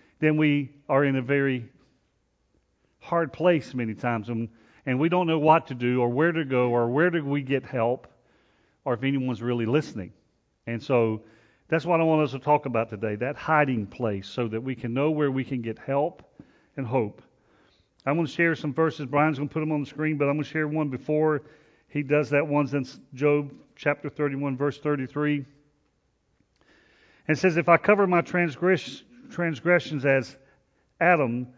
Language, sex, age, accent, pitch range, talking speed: English, male, 40-59, American, 130-165 Hz, 190 wpm